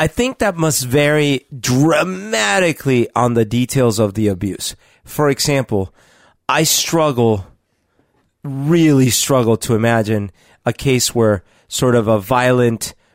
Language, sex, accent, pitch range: English, male, American, 110-145 Hz